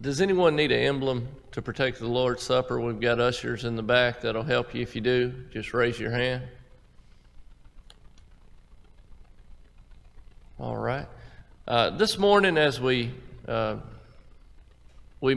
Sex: male